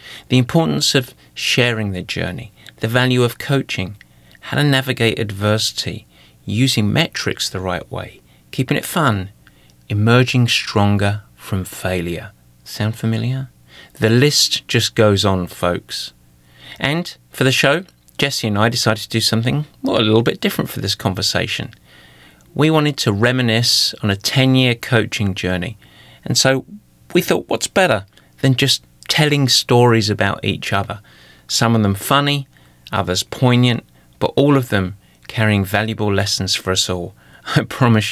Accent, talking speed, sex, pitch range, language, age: British, 145 wpm, male, 95-130 Hz, English, 30-49